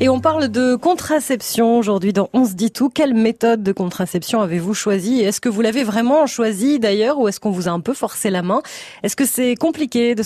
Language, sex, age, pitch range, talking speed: French, female, 30-49, 195-255 Hz, 230 wpm